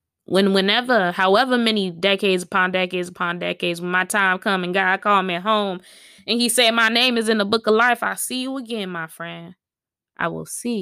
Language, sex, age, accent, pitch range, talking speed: English, female, 20-39, American, 190-235 Hz, 215 wpm